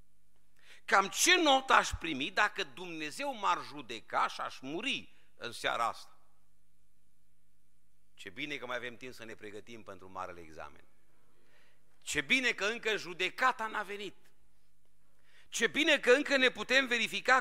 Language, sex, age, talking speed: Romanian, male, 50-69, 140 wpm